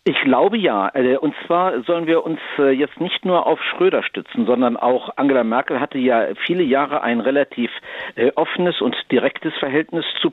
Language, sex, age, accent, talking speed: German, male, 50-69, German, 170 wpm